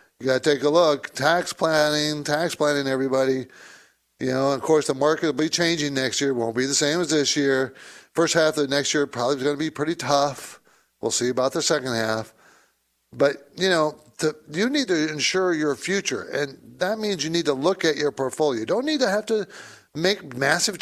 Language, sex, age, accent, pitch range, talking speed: English, male, 50-69, American, 130-165 Hz, 215 wpm